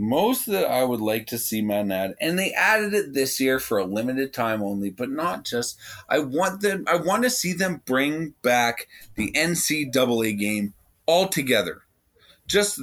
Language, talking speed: English, 180 wpm